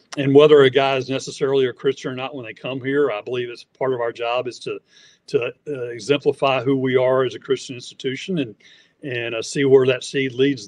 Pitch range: 130-150 Hz